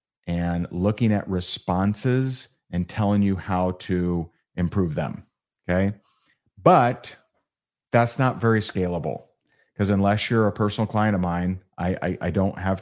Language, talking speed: English, 140 wpm